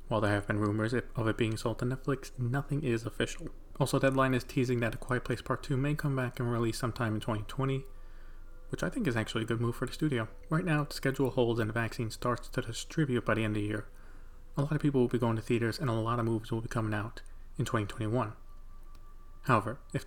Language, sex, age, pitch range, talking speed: English, male, 30-49, 110-125 Hz, 245 wpm